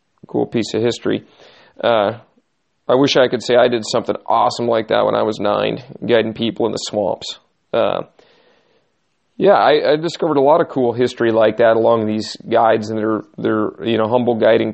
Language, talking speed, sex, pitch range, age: English, 190 wpm, male, 115-140 Hz, 40-59